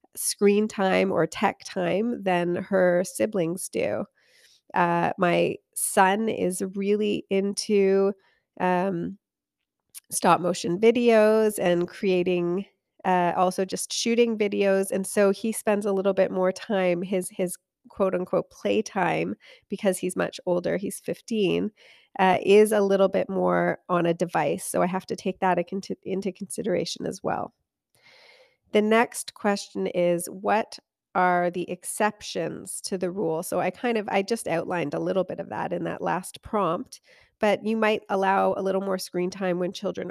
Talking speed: 155 wpm